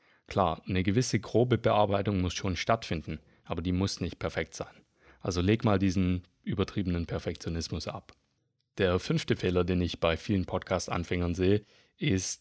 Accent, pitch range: German, 95-115 Hz